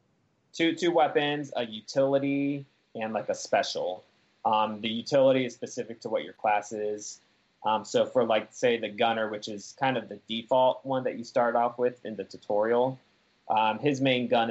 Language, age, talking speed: English, 20-39, 185 wpm